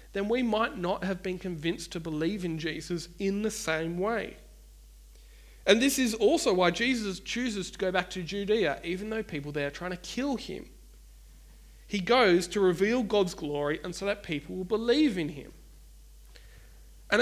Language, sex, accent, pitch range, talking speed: English, male, Australian, 150-200 Hz, 180 wpm